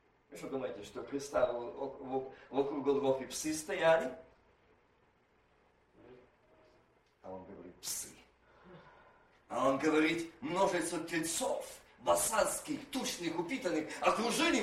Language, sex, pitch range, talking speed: Russian, male, 175-280 Hz, 85 wpm